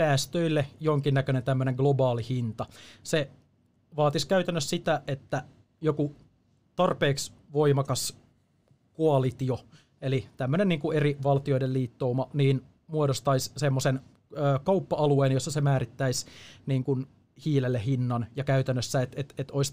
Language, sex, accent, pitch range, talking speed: Finnish, male, native, 125-145 Hz, 90 wpm